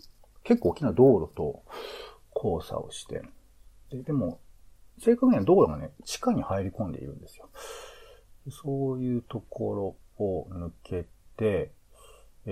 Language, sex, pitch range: Japanese, male, 85-125 Hz